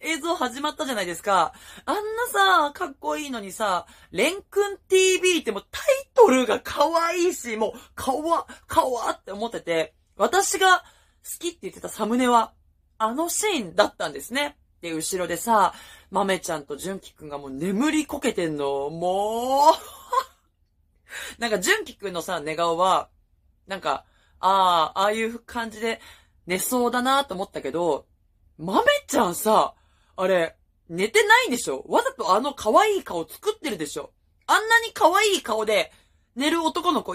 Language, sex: Japanese, female